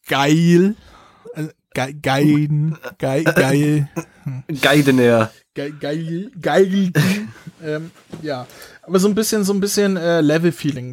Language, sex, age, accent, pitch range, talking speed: German, male, 20-39, German, 155-205 Hz, 105 wpm